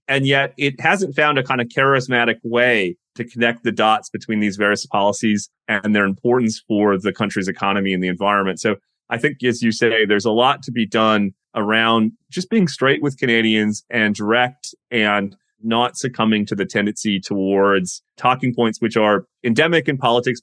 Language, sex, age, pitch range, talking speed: English, male, 30-49, 105-125 Hz, 180 wpm